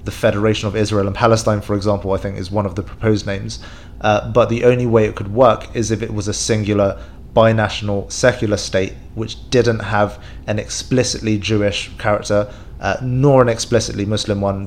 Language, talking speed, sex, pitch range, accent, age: English, 190 wpm, male, 100-115 Hz, British, 30-49